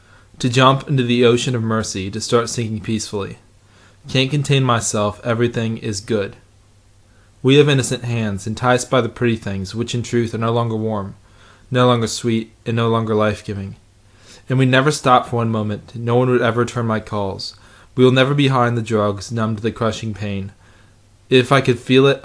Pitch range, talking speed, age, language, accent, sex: 105-125 Hz, 195 wpm, 20-39, English, American, male